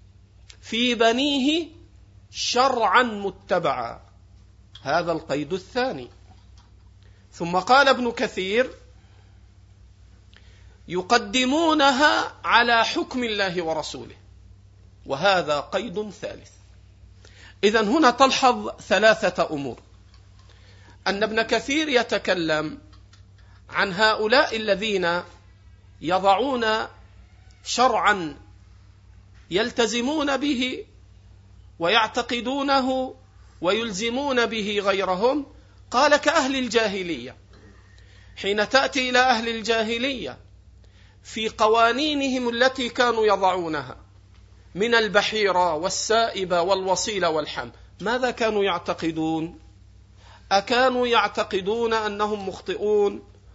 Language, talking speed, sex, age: Arabic, 70 wpm, male, 50-69